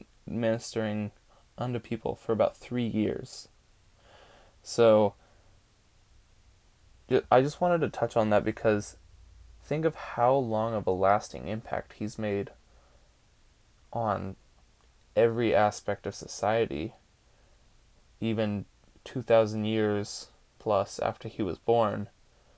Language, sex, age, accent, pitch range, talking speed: English, male, 20-39, American, 105-120 Hz, 105 wpm